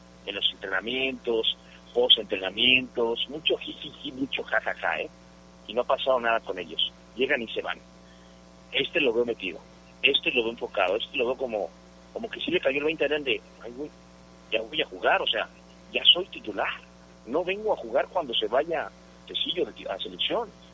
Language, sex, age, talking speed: Spanish, male, 50-69, 200 wpm